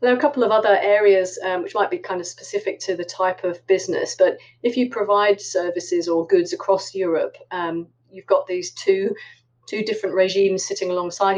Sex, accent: female, British